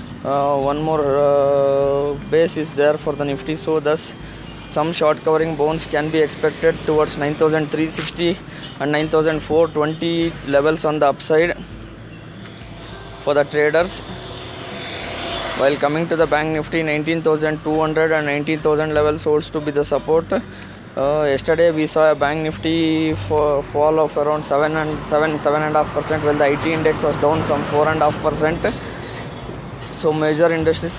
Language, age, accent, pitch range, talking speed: English, 20-39, Indian, 145-155 Hz, 155 wpm